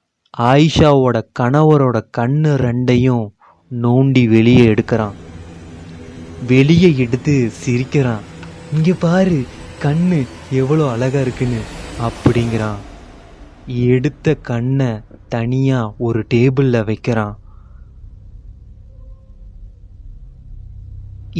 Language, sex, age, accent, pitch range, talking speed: Tamil, male, 20-39, native, 100-135 Hz, 65 wpm